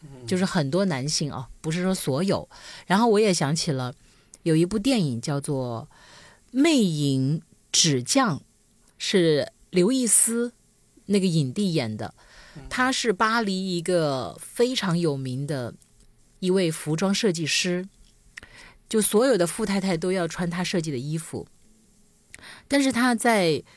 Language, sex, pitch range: Chinese, female, 150-200 Hz